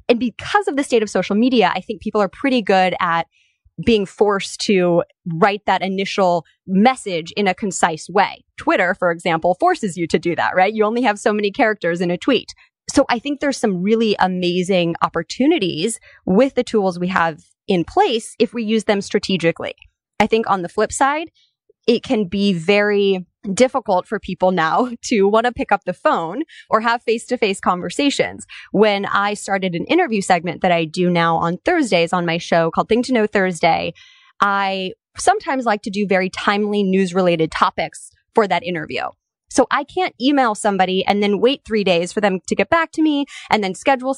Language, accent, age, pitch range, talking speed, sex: English, American, 20-39, 185-245 Hz, 190 wpm, female